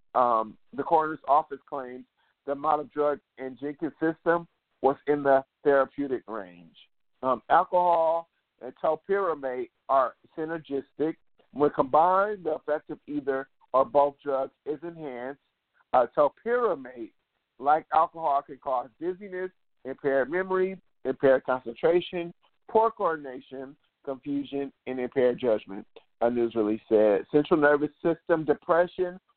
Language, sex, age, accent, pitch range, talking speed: English, male, 50-69, American, 130-160 Hz, 120 wpm